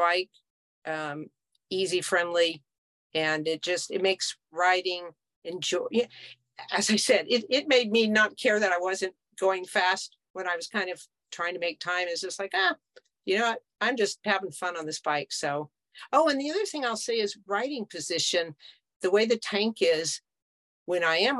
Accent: American